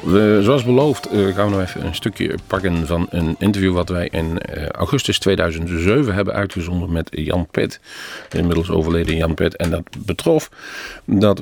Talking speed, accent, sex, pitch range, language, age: 165 wpm, Dutch, male, 80-100 Hz, Dutch, 40-59